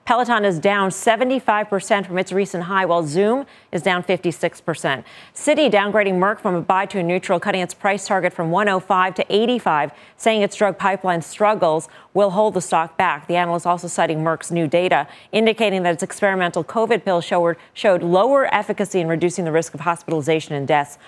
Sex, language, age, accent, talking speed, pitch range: female, English, 40-59, American, 185 wpm, 170-210 Hz